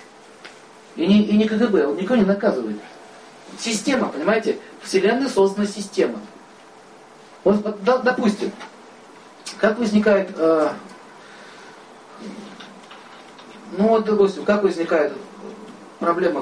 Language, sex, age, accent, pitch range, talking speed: Russian, male, 40-59, native, 160-215 Hz, 95 wpm